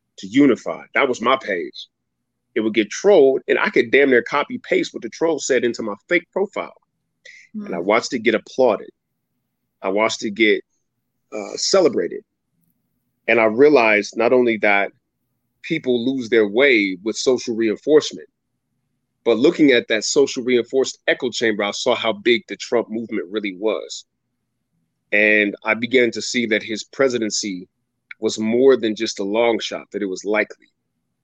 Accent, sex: American, male